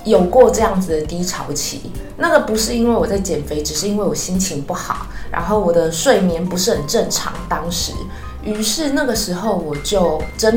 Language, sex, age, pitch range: Chinese, female, 20-39, 180-250 Hz